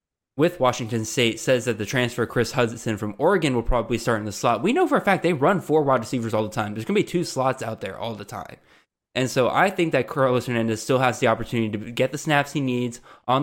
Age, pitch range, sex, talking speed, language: 20-39, 115-140 Hz, male, 265 wpm, English